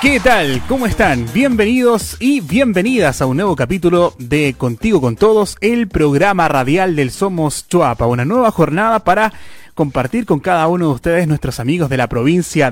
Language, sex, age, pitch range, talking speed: Spanish, male, 30-49, 135-185 Hz, 170 wpm